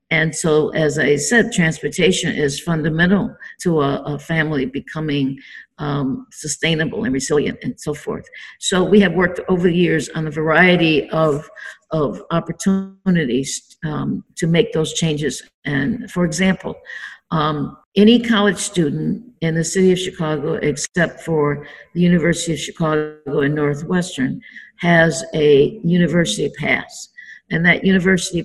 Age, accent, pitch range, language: 50-69, American, 155-185 Hz, English